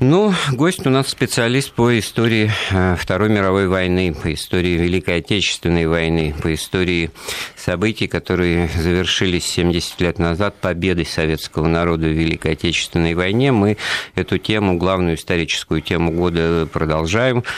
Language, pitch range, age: Russian, 85-100 Hz, 50-69